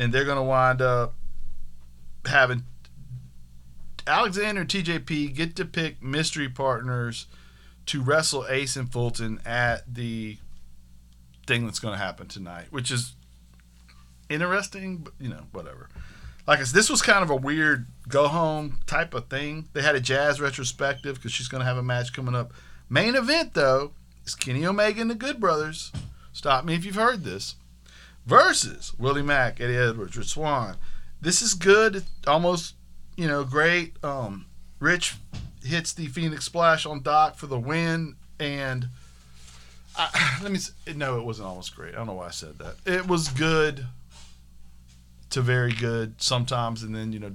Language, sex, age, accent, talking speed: English, male, 50-69, American, 165 wpm